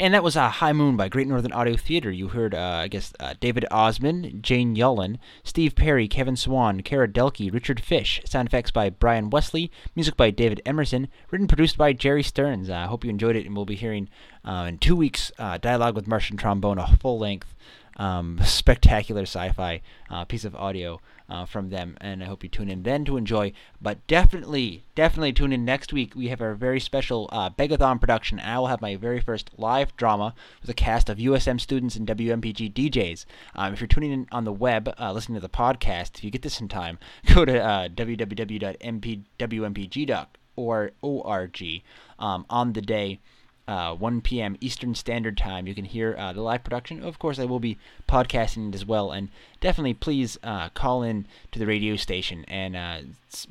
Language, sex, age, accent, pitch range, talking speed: English, male, 20-39, American, 100-130 Hz, 195 wpm